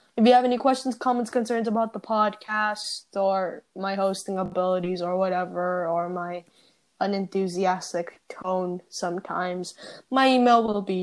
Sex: female